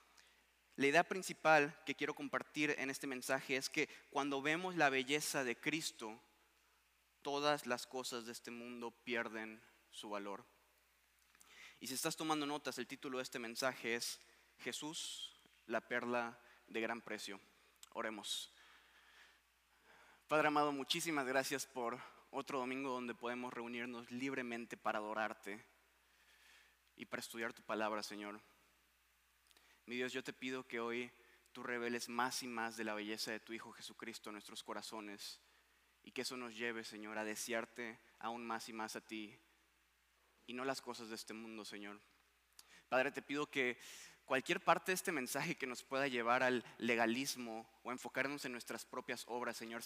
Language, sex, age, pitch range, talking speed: English, male, 20-39, 115-135 Hz, 155 wpm